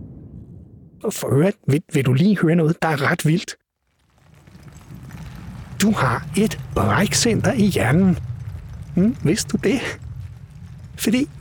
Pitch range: 130-210 Hz